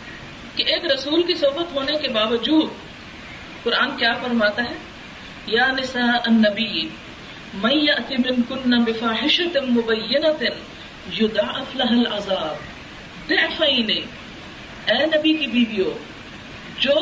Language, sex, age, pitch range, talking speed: Urdu, female, 40-59, 235-315 Hz, 70 wpm